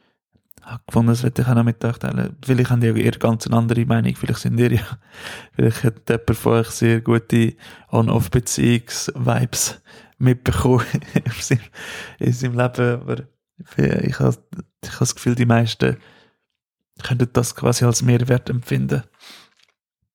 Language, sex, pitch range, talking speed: German, male, 115-130 Hz, 140 wpm